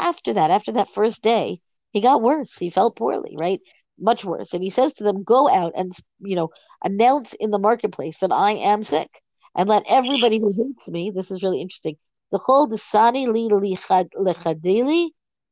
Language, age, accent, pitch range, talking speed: English, 50-69, American, 180-225 Hz, 180 wpm